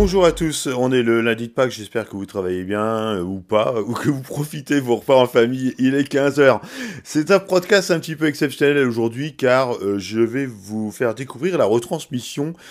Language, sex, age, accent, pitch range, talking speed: French, male, 40-59, French, 105-135 Hz, 215 wpm